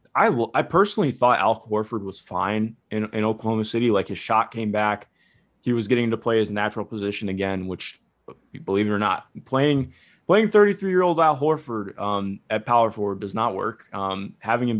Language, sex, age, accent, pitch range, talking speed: English, male, 20-39, American, 100-115 Hz, 195 wpm